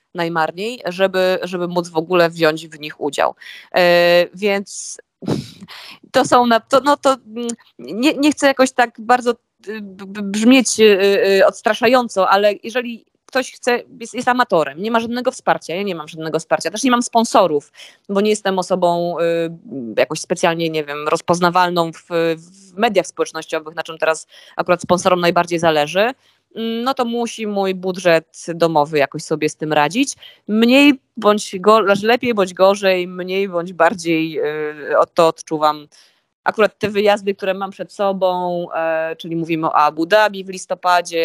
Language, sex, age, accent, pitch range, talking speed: Polish, female, 20-39, native, 165-220 Hz, 155 wpm